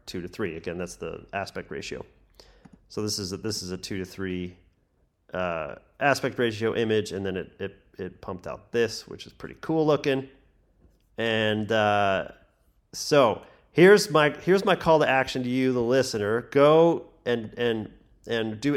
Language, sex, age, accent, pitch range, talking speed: English, male, 30-49, American, 105-130 Hz, 175 wpm